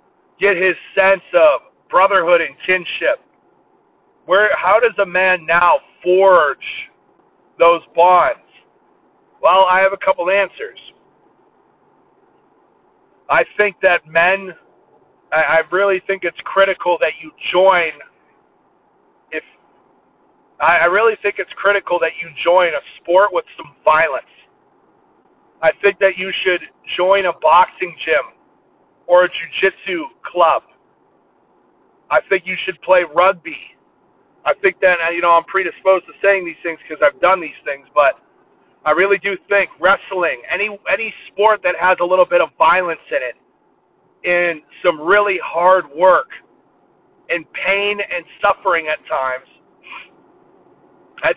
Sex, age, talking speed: male, 50-69, 135 wpm